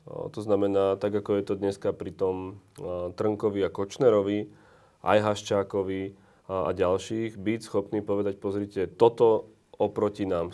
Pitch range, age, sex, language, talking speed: 100-115 Hz, 30-49, male, Slovak, 130 wpm